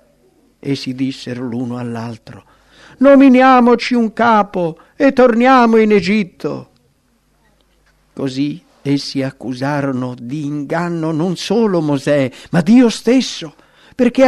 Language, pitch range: English, 125-185 Hz